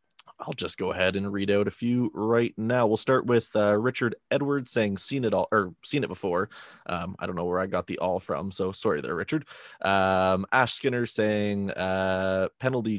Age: 20-39